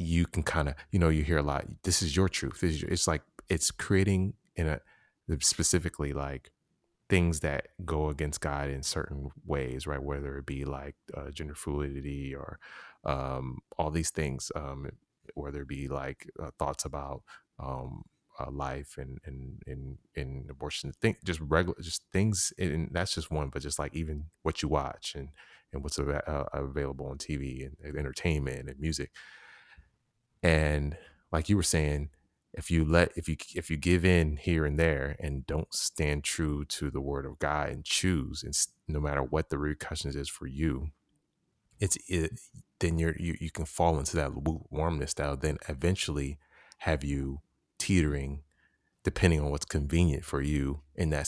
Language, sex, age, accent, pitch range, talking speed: English, male, 30-49, American, 70-85 Hz, 180 wpm